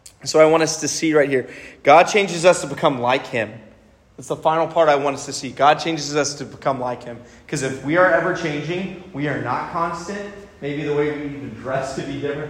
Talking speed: 240 wpm